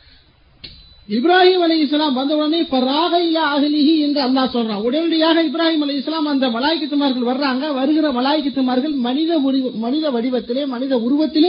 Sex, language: male, Tamil